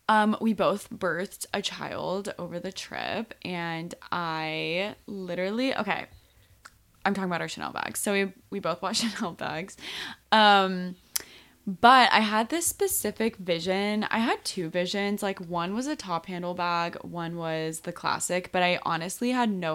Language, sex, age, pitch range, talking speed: English, female, 20-39, 165-210 Hz, 160 wpm